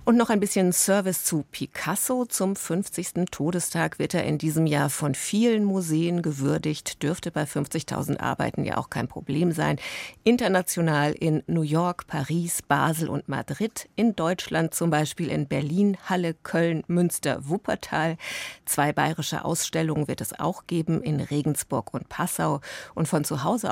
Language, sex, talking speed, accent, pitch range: German, female, 155 wpm, German, 150-190 Hz